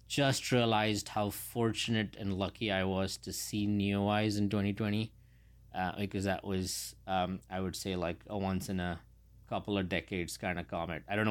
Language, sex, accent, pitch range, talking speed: English, male, Indian, 95-110 Hz, 185 wpm